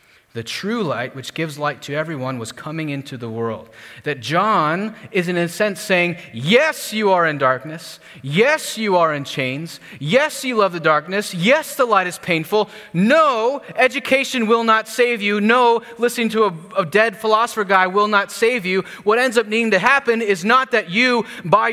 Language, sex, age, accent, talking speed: English, male, 30-49, American, 190 wpm